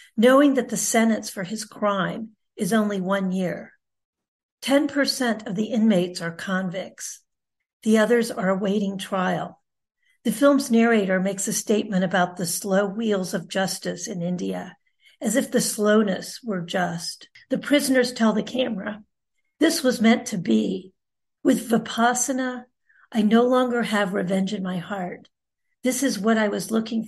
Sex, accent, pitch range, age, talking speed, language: female, American, 200-245 Hz, 50-69, 150 wpm, English